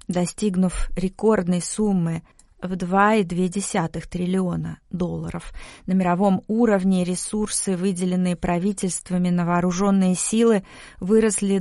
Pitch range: 180-200 Hz